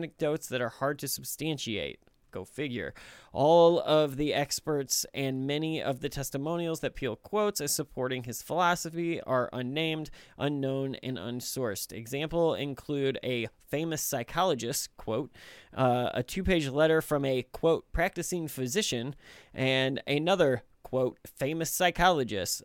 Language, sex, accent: English, male, American